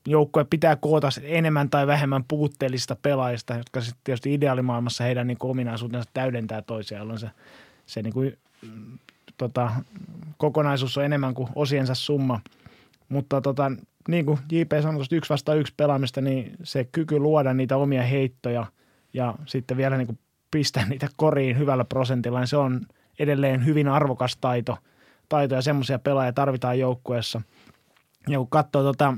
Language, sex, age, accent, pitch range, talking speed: Finnish, male, 20-39, native, 125-145 Hz, 140 wpm